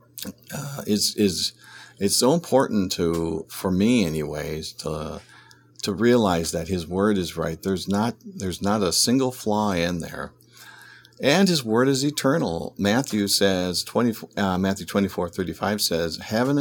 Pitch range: 85-110 Hz